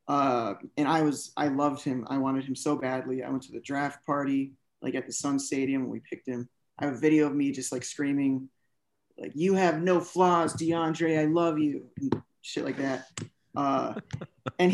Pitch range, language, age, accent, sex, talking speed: 140-170 Hz, English, 20-39, American, male, 210 wpm